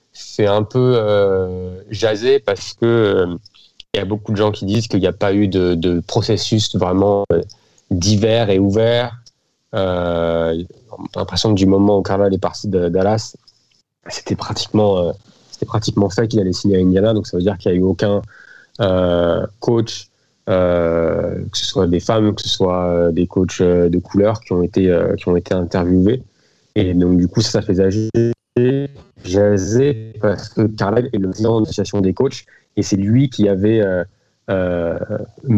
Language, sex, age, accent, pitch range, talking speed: French, male, 30-49, French, 95-110 Hz, 185 wpm